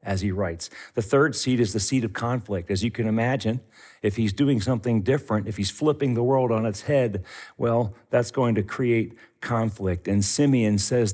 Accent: American